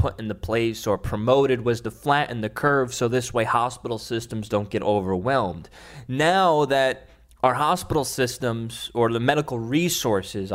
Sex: male